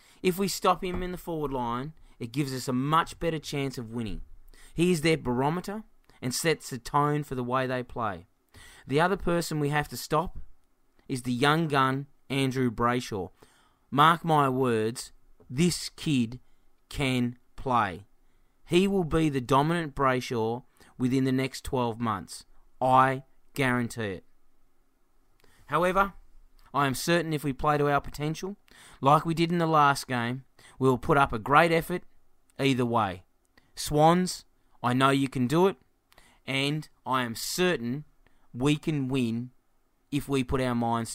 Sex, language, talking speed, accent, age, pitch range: male, English, 155 wpm, Australian, 20-39, 120-150 Hz